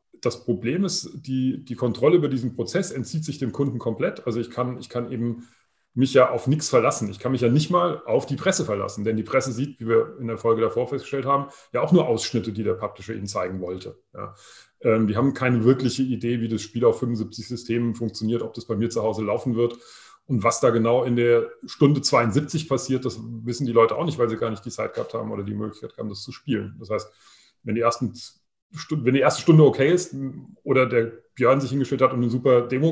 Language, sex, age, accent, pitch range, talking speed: German, male, 30-49, German, 115-140 Hz, 235 wpm